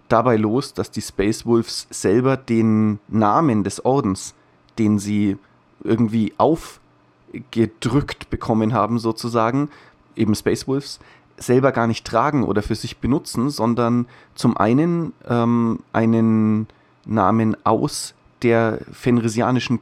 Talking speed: 115 wpm